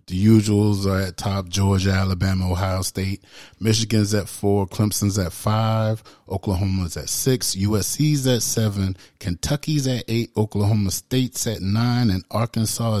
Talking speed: 140 wpm